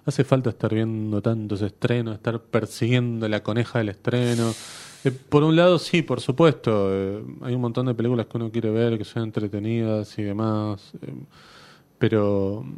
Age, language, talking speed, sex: 30-49, Spanish, 170 wpm, male